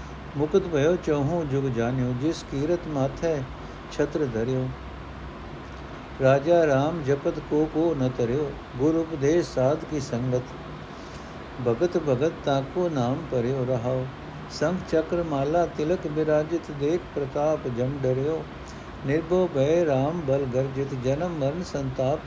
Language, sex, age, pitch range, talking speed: Punjabi, male, 60-79, 125-160 Hz, 120 wpm